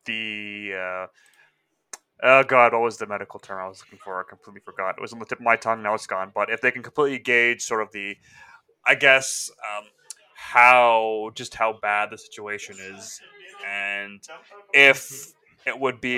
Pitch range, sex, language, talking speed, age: 105-125 Hz, male, English, 190 wpm, 20-39